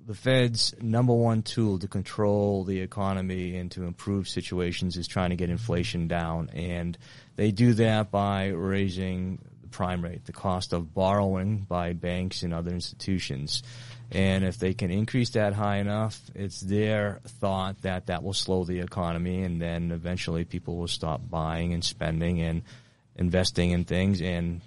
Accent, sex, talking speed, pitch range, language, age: American, male, 165 wpm, 90-120 Hz, English, 30-49